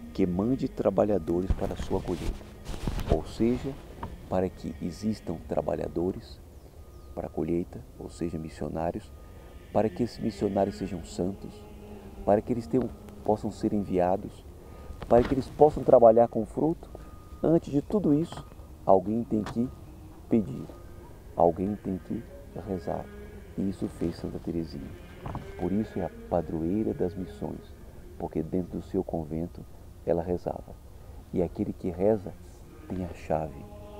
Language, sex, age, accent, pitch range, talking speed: Portuguese, male, 50-69, Brazilian, 80-100 Hz, 135 wpm